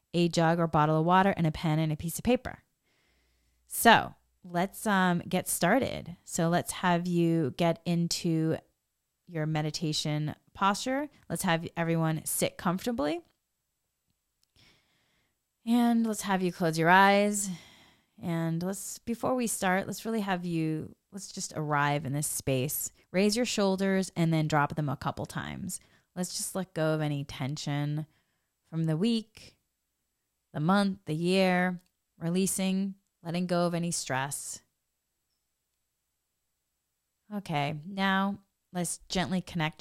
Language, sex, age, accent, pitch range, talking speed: English, female, 20-39, American, 145-185 Hz, 135 wpm